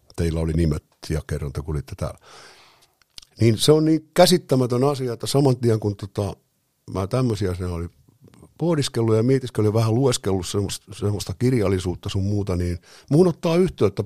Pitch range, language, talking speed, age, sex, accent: 90-115 Hz, Finnish, 160 wpm, 50-69, male, native